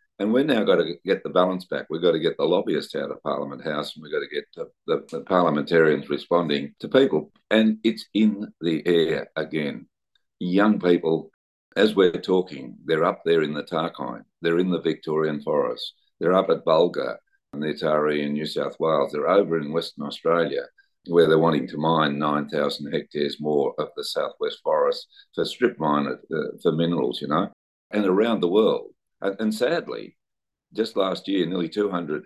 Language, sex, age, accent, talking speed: English, male, 50-69, Australian, 190 wpm